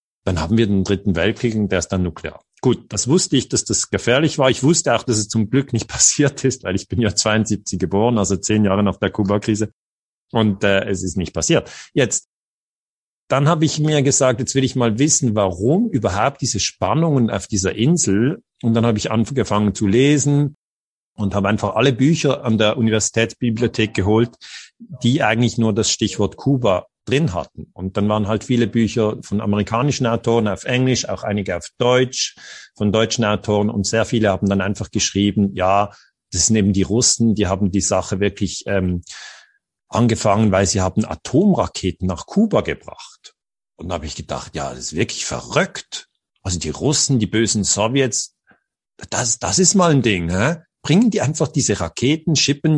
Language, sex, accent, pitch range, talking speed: German, male, German, 100-130 Hz, 185 wpm